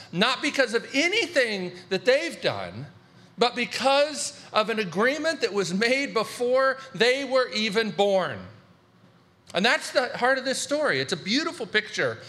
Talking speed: 150 wpm